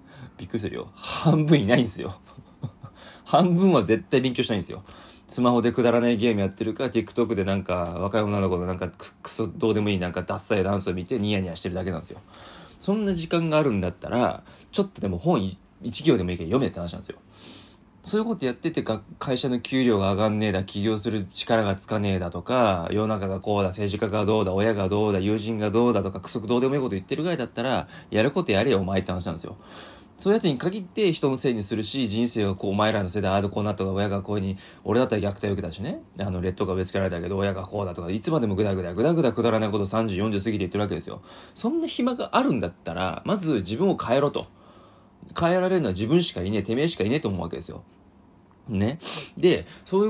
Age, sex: 20-39, male